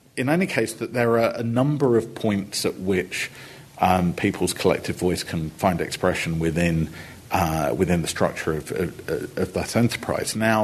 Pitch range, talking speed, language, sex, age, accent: 85-120 Hz, 170 wpm, English, male, 50-69, British